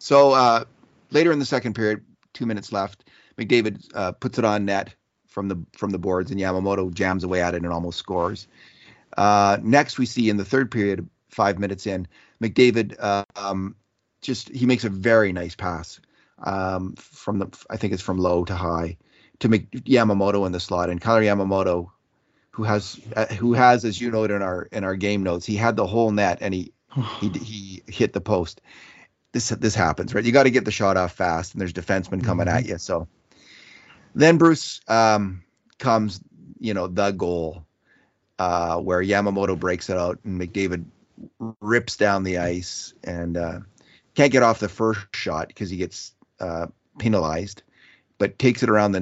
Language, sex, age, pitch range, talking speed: English, male, 30-49, 90-115 Hz, 185 wpm